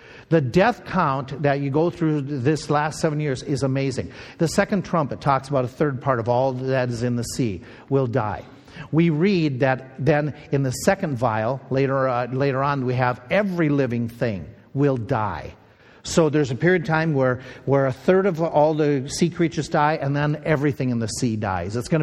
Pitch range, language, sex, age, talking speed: 130-160 Hz, English, male, 50-69, 200 wpm